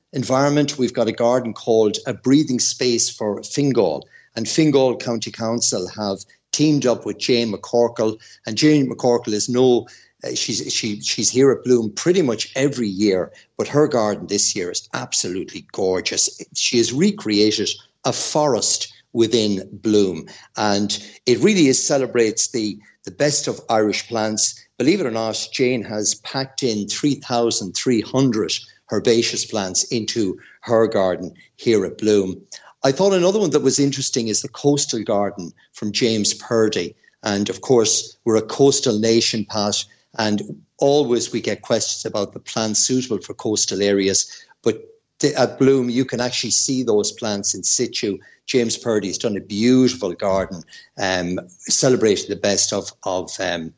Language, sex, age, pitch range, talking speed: English, male, 60-79, 105-130 Hz, 155 wpm